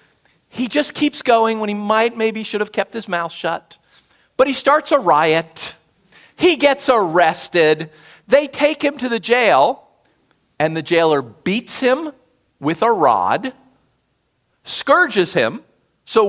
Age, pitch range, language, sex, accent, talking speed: 50-69, 170-265 Hz, English, male, American, 145 wpm